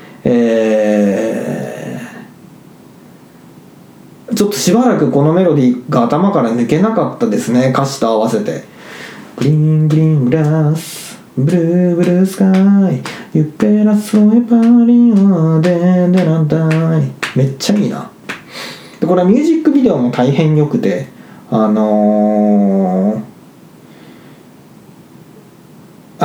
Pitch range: 125-200 Hz